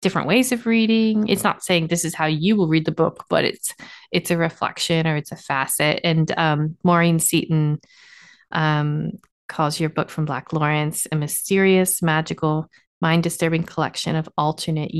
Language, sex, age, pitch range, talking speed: English, female, 30-49, 155-175 Hz, 170 wpm